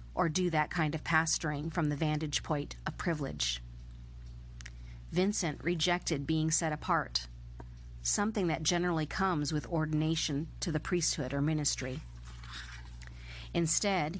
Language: English